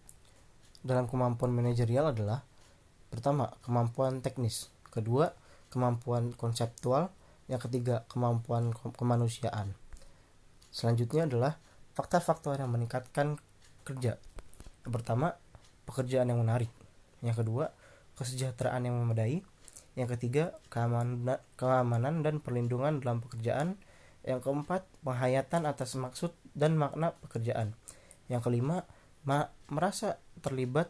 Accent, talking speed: native, 95 wpm